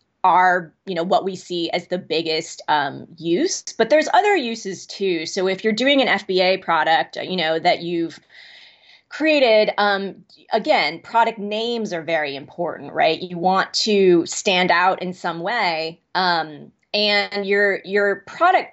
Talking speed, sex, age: 155 wpm, female, 30-49